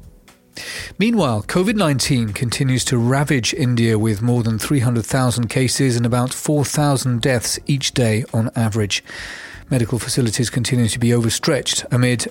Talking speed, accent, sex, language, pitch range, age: 125 wpm, British, male, English, 115-140 Hz, 40-59